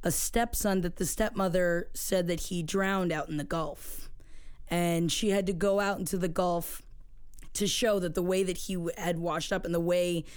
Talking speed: 205 wpm